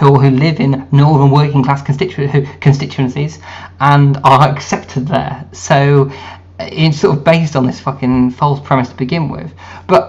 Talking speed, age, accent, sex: 150 wpm, 20-39, British, male